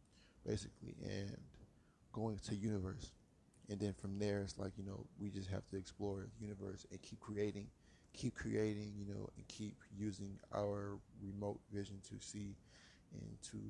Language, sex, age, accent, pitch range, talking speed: English, male, 20-39, American, 95-105 Hz, 160 wpm